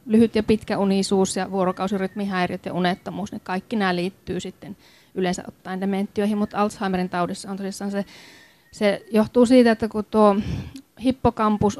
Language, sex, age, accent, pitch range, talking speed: Finnish, female, 30-49, native, 195-230 Hz, 135 wpm